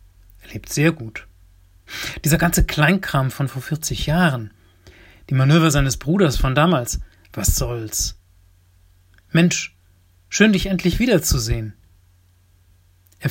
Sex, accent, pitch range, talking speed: male, German, 90-135 Hz, 110 wpm